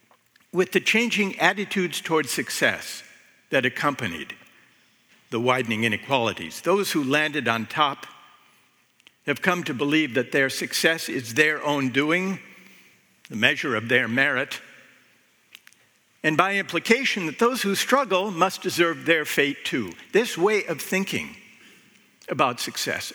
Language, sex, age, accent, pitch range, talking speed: Dutch, male, 60-79, American, 140-210 Hz, 130 wpm